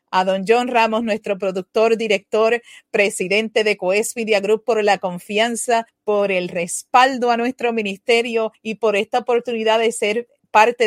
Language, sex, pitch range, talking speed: Spanish, female, 210-260 Hz, 150 wpm